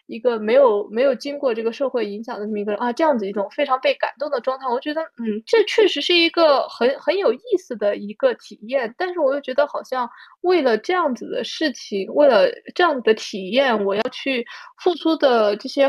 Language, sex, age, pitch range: Chinese, female, 20-39, 215-300 Hz